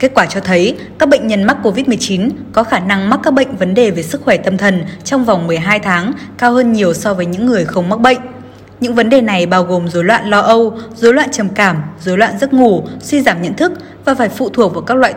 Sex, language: female, Vietnamese